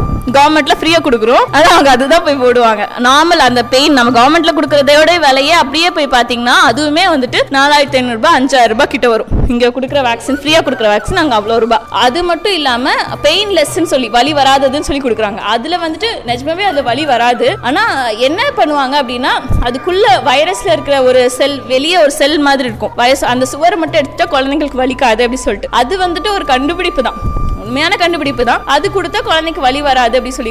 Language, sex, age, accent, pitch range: Tamil, female, 20-39, native, 255-335 Hz